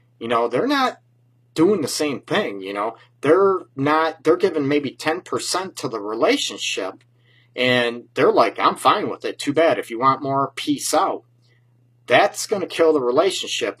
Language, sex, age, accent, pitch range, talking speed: English, male, 40-59, American, 120-185 Hz, 175 wpm